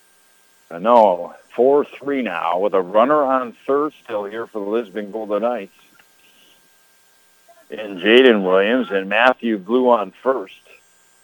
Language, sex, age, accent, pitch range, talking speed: English, male, 60-79, American, 110-135 Hz, 125 wpm